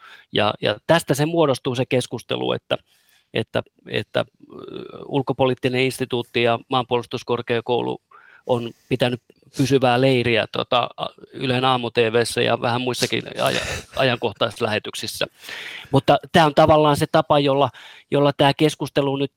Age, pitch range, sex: 30-49, 125-140 Hz, male